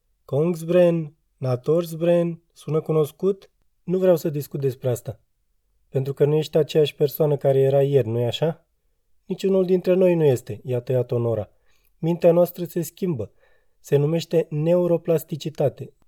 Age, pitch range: 20-39, 130-155 Hz